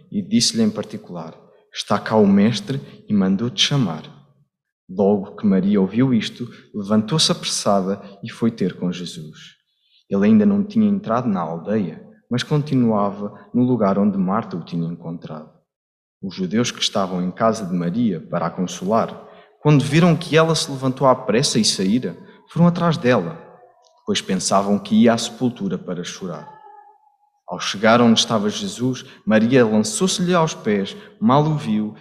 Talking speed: 155 wpm